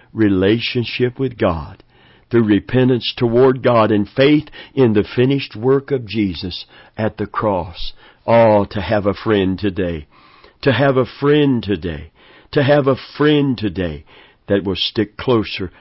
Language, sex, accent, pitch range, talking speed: English, male, American, 100-125 Hz, 145 wpm